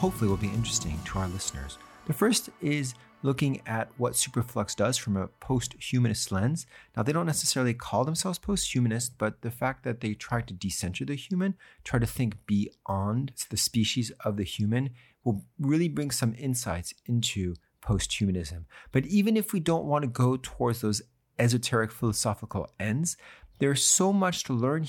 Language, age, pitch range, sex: English, 40-59, 100-140 Hz, male